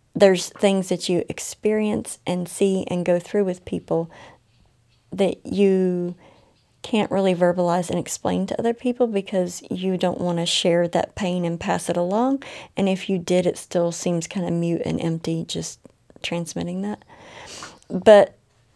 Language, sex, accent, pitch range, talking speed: English, female, American, 175-205 Hz, 160 wpm